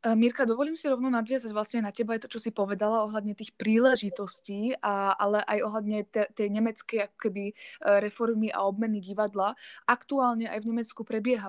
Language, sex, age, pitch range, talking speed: Slovak, female, 20-39, 195-225 Hz, 165 wpm